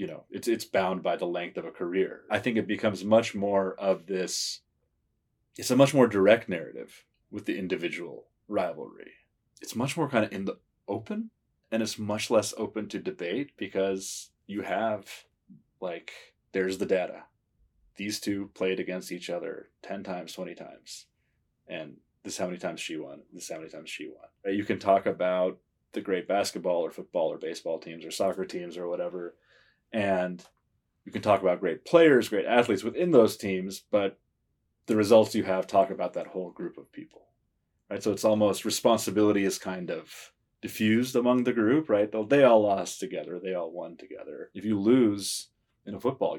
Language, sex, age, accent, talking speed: English, male, 30-49, American, 185 wpm